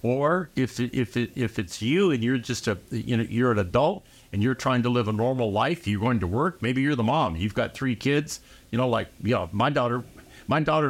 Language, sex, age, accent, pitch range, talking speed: English, male, 60-79, American, 105-135 Hz, 240 wpm